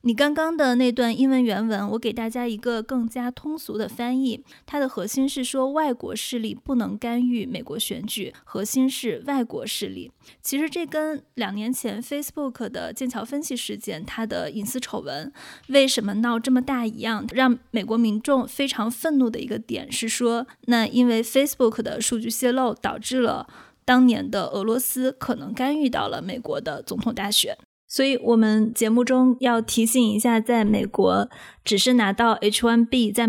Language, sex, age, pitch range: Chinese, female, 20-39, 215-250 Hz